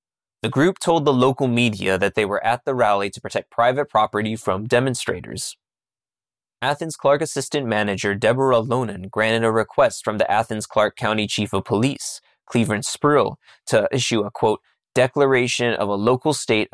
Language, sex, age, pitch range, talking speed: English, male, 20-39, 105-130 Hz, 165 wpm